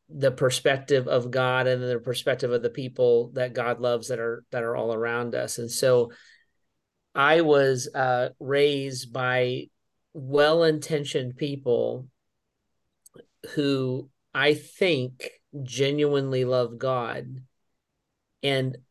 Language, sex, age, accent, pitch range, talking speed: English, male, 40-59, American, 125-145 Hz, 115 wpm